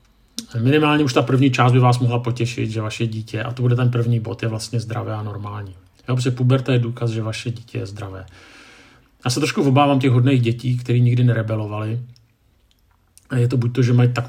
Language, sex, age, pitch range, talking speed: Czech, male, 50-69, 115-125 Hz, 205 wpm